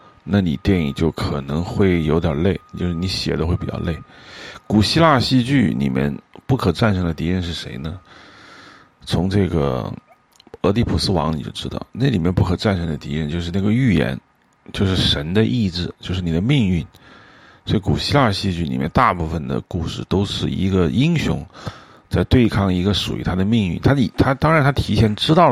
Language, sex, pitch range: Chinese, male, 85-110 Hz